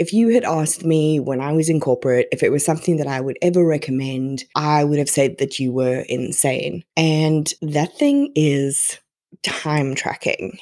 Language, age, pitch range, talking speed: English, 20-39, 150-185 Hz, 185 wpm